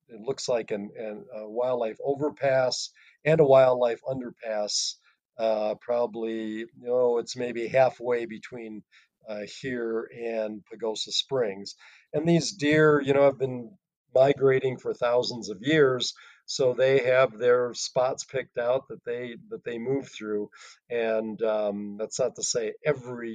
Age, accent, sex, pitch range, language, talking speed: 40-59, American, male, 110-130 Hz, English, 140 wpm